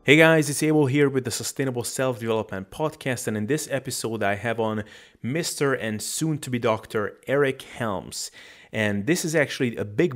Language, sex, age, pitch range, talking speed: English, male, 30-49, 105-130 Hz, 165 wpm